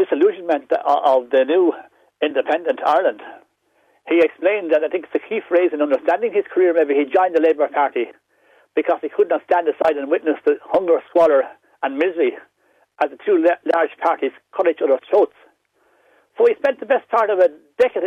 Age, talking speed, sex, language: 60-79, 185 wpm, male, English